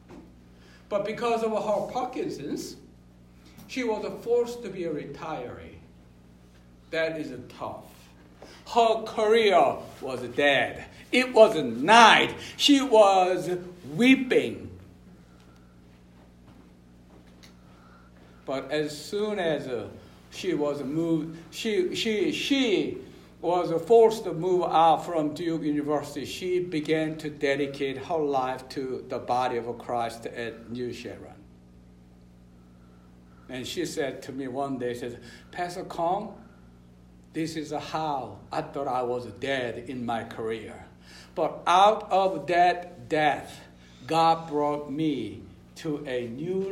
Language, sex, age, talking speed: English, male, 60-79, 115 wpm